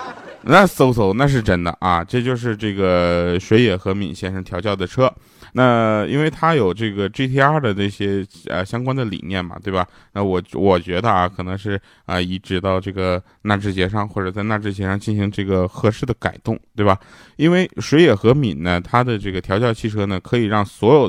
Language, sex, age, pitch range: Chinese, male, 20-39, 95-120 Hz